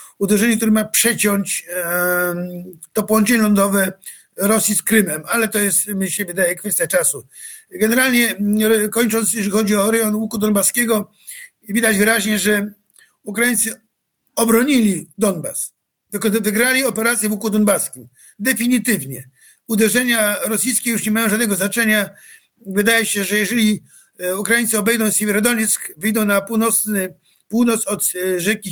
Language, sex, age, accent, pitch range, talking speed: Polish, male, 50-69, native, 200-230 Hz, 120 wpm